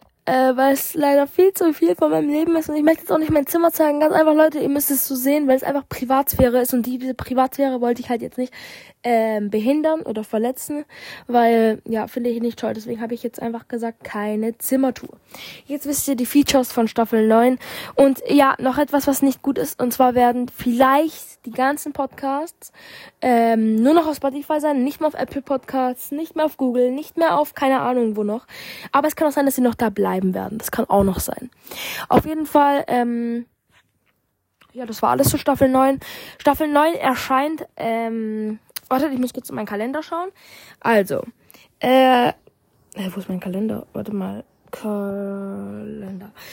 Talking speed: 195 wpm